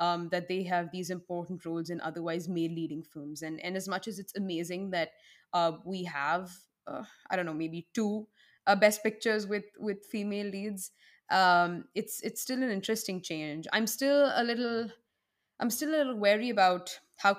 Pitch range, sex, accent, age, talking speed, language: 170-205 Hz, female, Indian, 20-39, 185 wpm, English